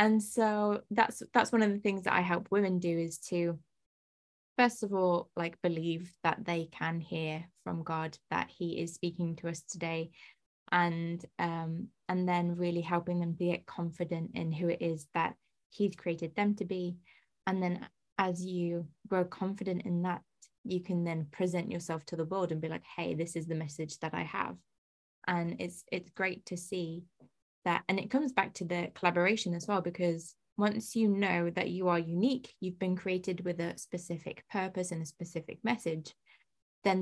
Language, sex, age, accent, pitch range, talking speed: English, female, 20-39, British, 165-190 Hz, 185 wpm